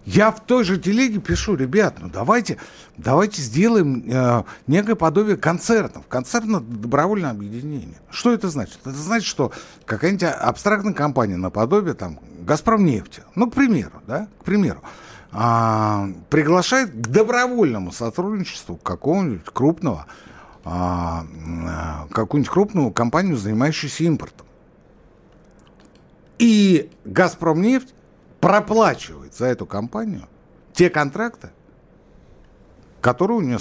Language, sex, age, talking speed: Russian, male, 60-79, 100 wpm